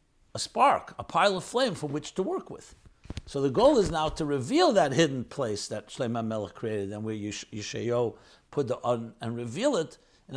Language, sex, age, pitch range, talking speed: English, male, 60-79, 120-170 Hz, 210 wpm